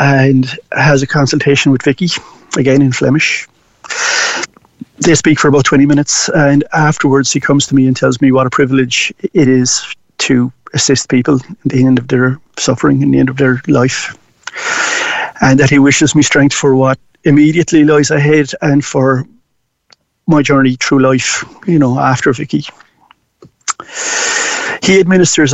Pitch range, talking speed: 135-165 Hz, 155 wpm